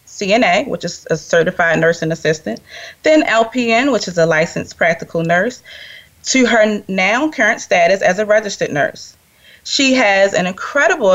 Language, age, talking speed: English, 20-39, 150 wpm